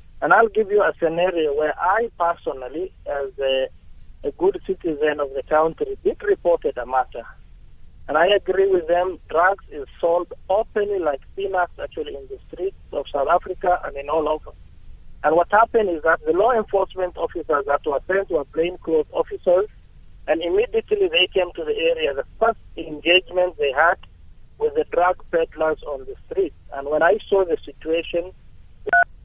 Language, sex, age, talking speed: English, male, 50-69, 170 wpm